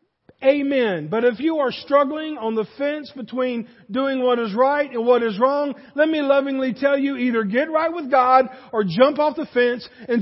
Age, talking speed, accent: 50-69, 200 wpm, American